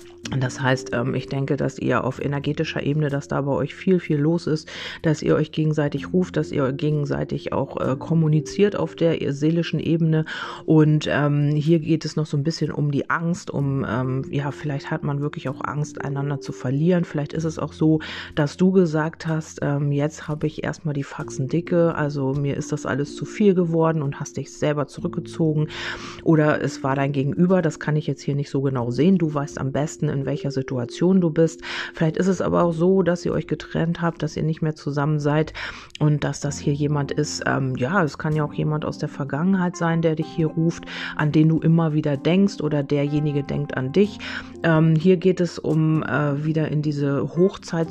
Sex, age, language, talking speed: female, 40-59, German, 205 wpm